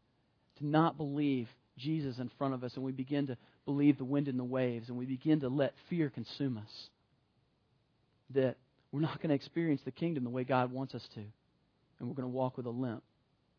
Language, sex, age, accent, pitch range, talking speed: English, male, 40-59, American, 125-145 Hz, 210 wpm